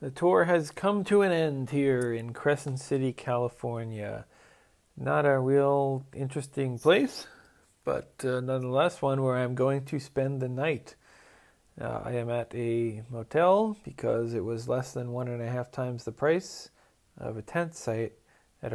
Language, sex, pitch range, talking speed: English, male, 115-150 Hz, 165 wpm